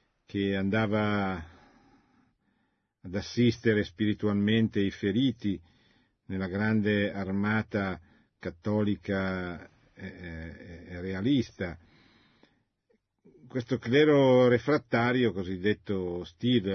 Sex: male